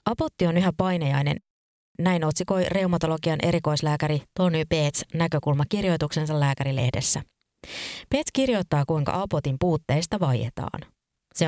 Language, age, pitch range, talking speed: Finnish, 20-39, 145-180 Hz, 100 wpm